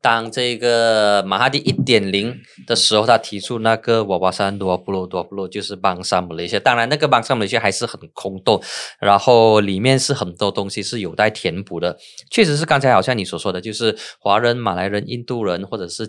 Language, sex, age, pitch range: Chinese, male, 20-39, 95-120 Hz